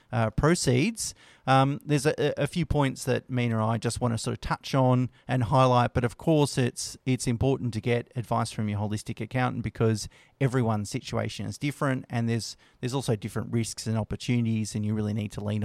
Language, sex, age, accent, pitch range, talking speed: English, male, 30-49, Australian, 115-130 Hz, 205 wpm